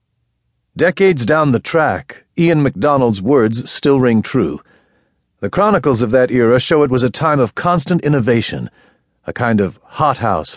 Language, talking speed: English, 160 wpm